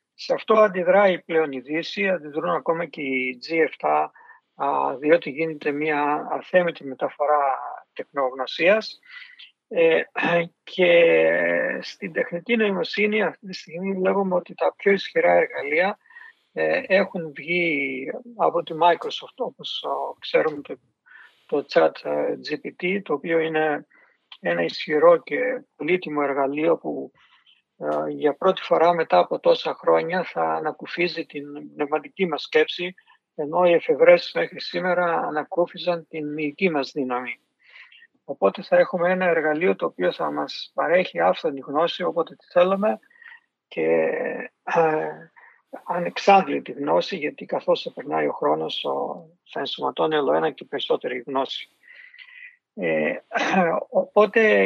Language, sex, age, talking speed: Greek, male, 50-69, 110 wpm